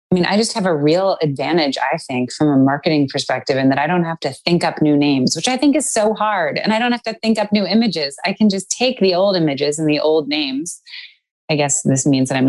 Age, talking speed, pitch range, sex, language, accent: 20-39, 270 wpm, 145-200 Hz, female, English, American